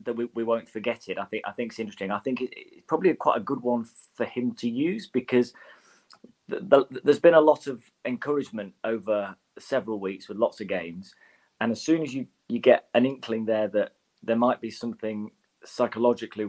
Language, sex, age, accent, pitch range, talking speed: English, male, 30-49, British, 105-120 Hz, 210 wpm